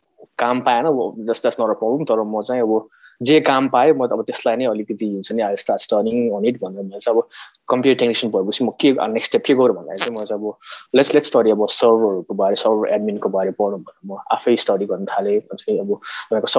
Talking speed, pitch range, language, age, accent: 135 wpm, 105-165 Hz, English, 20-39, Indian